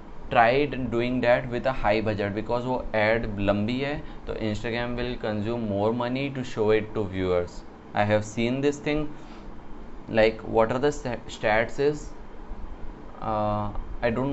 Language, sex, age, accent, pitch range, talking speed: Hindi, male, 20-39, native, 105-120 Hz, 150 wpm